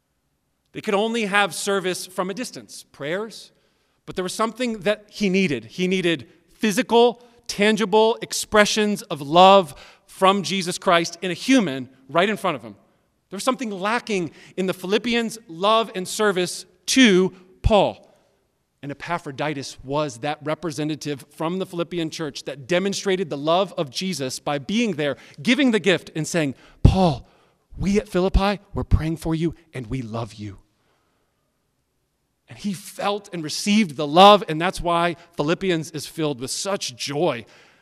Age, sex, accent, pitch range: 40-59, male, American, 150-200 Hz